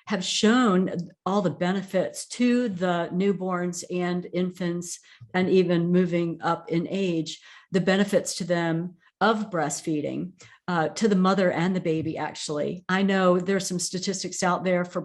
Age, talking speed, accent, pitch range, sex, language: 50-69, 150 wpm, American, 175-205 Hz, female, English